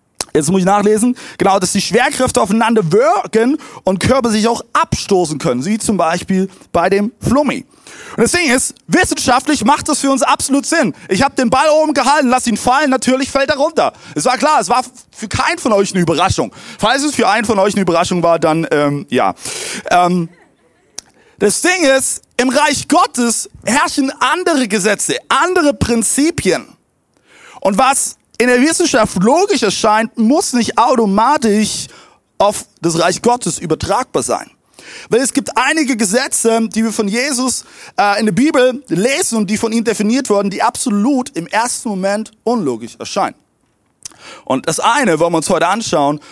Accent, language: German, German